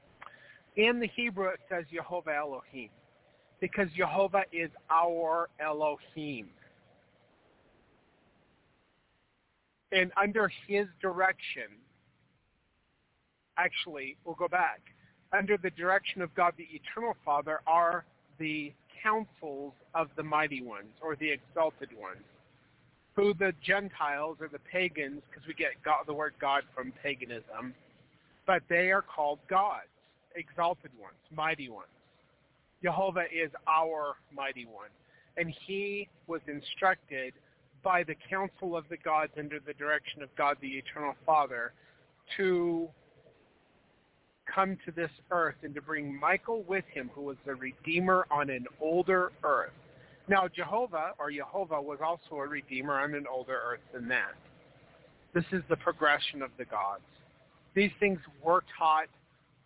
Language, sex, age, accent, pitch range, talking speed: English, male, 40-59, American, 145-180 Hz, 130 wpm